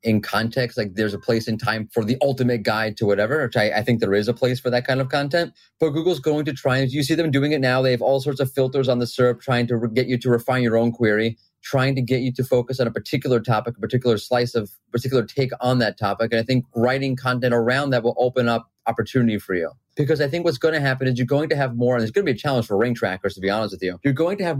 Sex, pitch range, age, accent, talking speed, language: male, 120-145 Hz, 30-49, American, 295 wpm, English